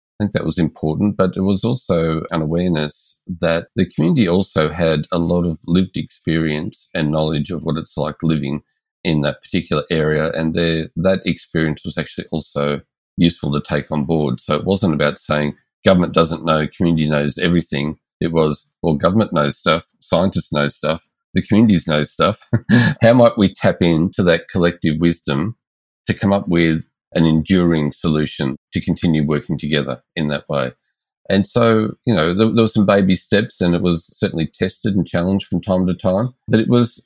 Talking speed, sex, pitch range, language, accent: 180 wpm, male, 80-95 Hz, English, Australian